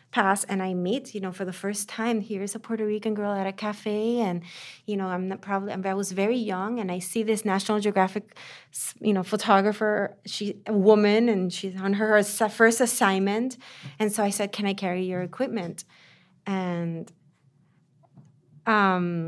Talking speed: 175 wpm